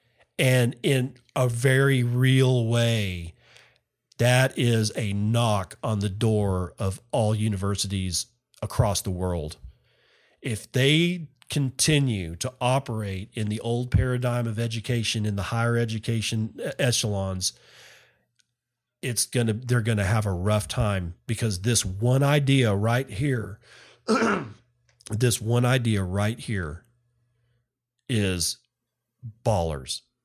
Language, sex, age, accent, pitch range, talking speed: English, male, 40-59, American, 105-130 Hz, 115 wpm